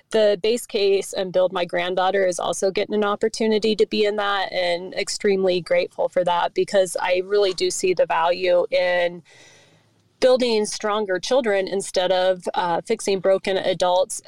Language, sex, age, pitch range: English, female, 30-49, 185-215 Hz